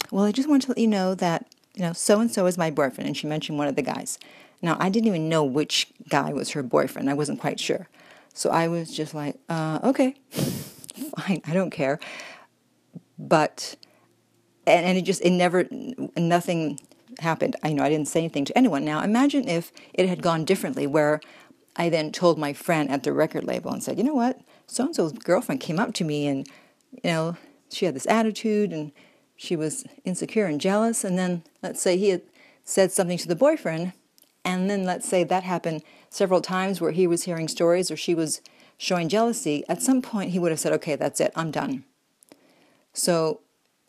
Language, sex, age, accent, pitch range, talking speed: English, female, 50-69, American, 160-215 Hz, 200 wpm